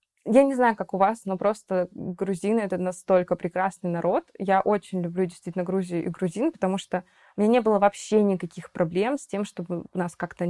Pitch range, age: 180-225 Hz, 20-39